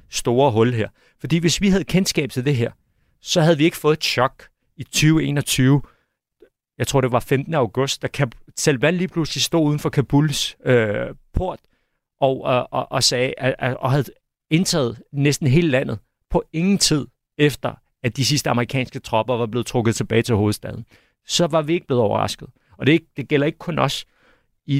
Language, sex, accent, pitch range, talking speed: Danish, male, native, 115-150 Hz, 190 wpm